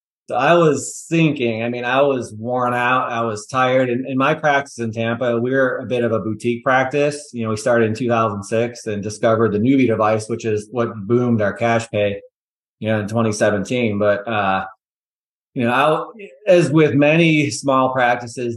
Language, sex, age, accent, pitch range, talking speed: English, male, 30-49, American, 110-130 Hz, 190 wpm